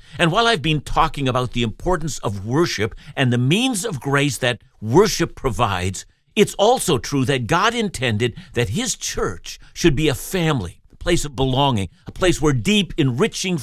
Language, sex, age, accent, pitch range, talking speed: English, male, 60-79, American, 115-170 Hz, 175 wpm